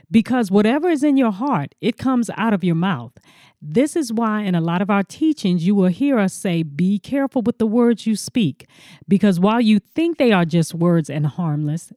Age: 40-59